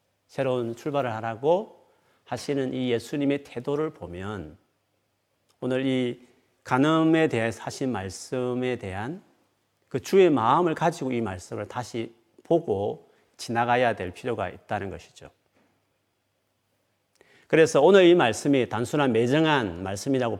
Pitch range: 105-145 Hz